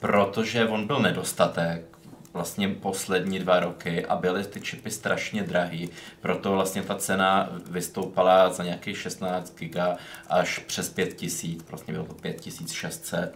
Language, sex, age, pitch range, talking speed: Czech, male, 20-39, 90-95 Hz, 135 wpm